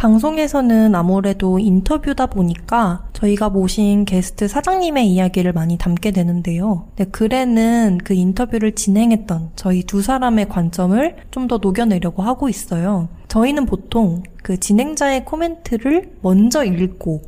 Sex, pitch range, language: female, 185-235 Hz, Korean